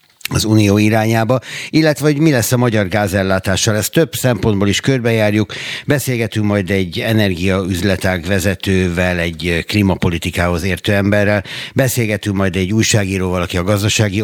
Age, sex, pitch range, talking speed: 60-79, male, 95-120 Hz, 130 wpm